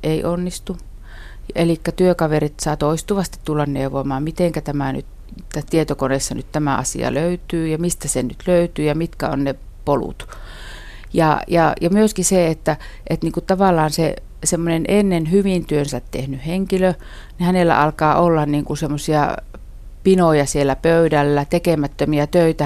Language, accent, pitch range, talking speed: Finnish, native, 145-175 Hz, 120 wpm